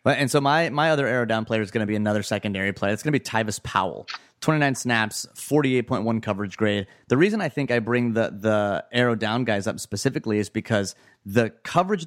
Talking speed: 215 wpm